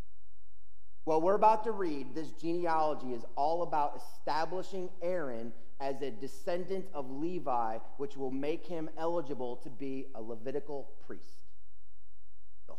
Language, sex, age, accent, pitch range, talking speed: English, male, 30-49, American, 115-175 Hz, 130 wpm